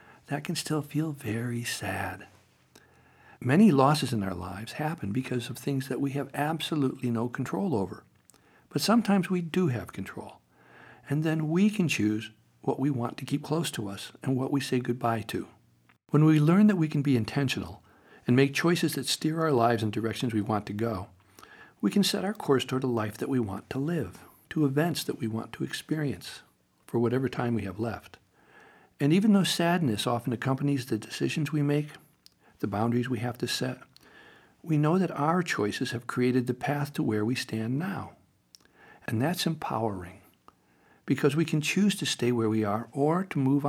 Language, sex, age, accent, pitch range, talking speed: English, male, 60-79, American, 110-150 Hz, 190 wpm